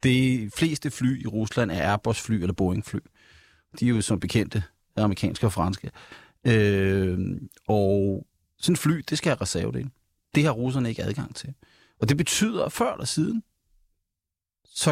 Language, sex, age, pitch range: Danish, male, 40-59, 105-135 Hz